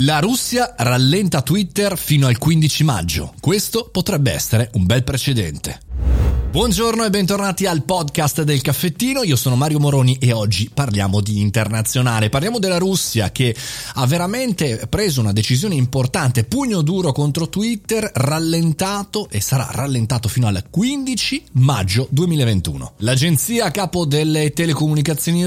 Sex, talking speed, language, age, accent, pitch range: male, 135 wpm, Italian, 30-49, native, 115-165 Hz